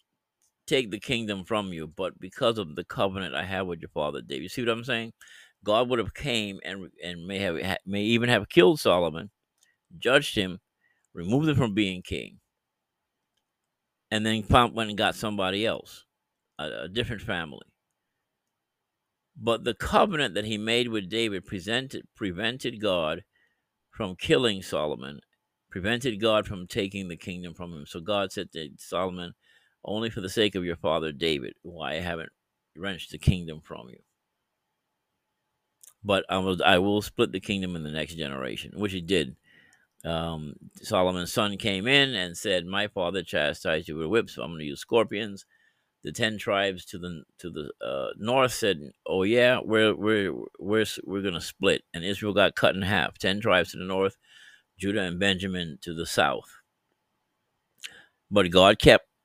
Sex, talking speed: male, 170 wpm